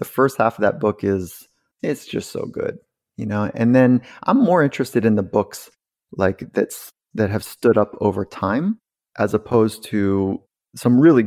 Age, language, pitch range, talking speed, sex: 30-49, English, 105-130 Hz, 180 wpm, male